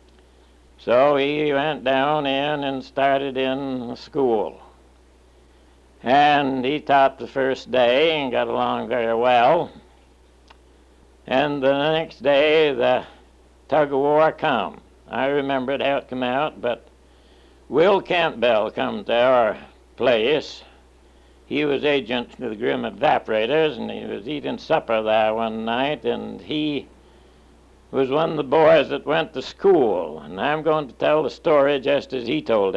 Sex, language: male, English